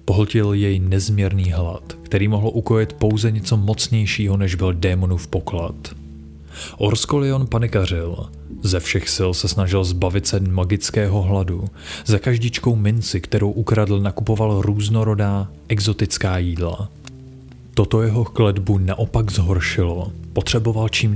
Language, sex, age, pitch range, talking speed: Czech, male, 30-49, 90-105 Hz, 115 wpm